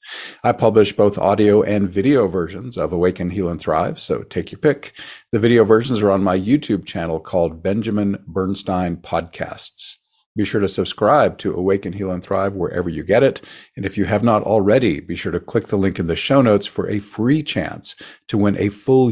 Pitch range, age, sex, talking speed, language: 95-105 Hz, 50-69, male, 205 wpm, English